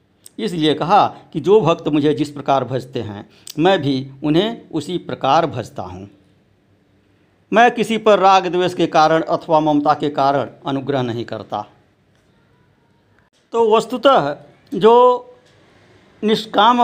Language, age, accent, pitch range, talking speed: Hindi, 60-79, native, 135-195 Hz, 125 wpm